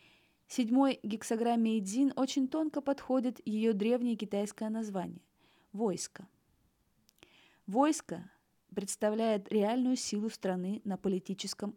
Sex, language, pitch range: female, Russian, 195-245 Hz